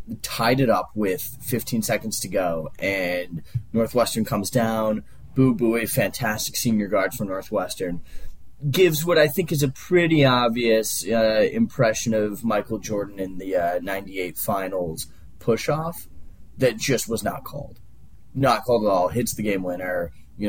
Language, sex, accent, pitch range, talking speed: English, male, American, 105-145 Hz, 150 wpm